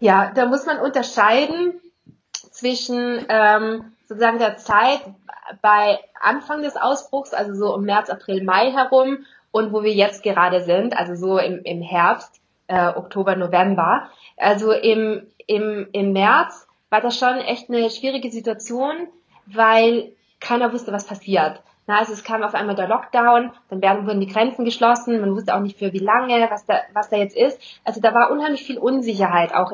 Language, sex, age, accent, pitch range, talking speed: German, female, 20-39, German, 210-260 Hz, 170 wpm